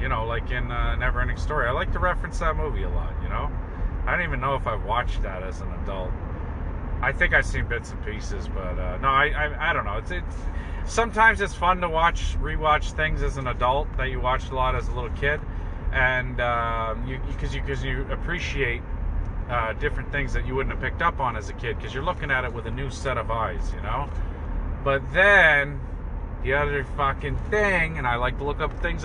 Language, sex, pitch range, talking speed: English, male, 80-135 Hz, 230 wpm